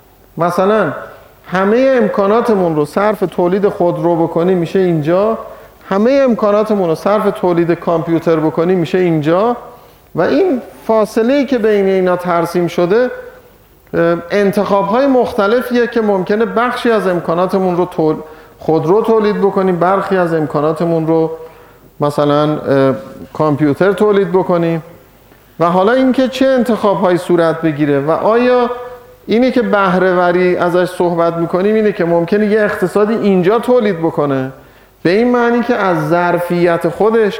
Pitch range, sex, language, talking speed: 165-215 Hz, male, Persian, 130 wpm